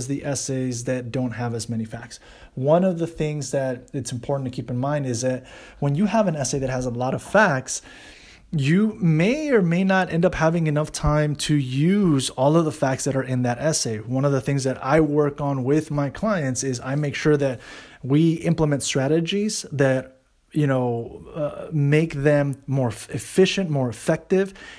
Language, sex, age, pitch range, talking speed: English, male, 30-49, 130-160 Hz, 200 wpm